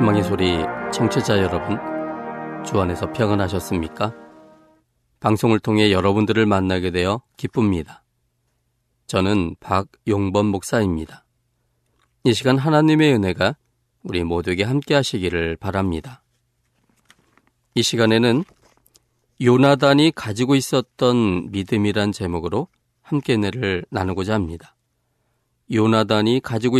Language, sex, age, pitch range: Korean, male, 40-59, 95-125 Hz